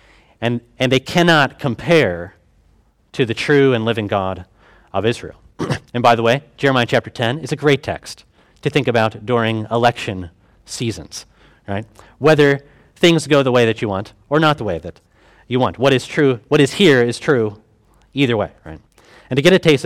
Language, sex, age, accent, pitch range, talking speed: English, male, 30-49, American, 100-130 Hz, 185 wpm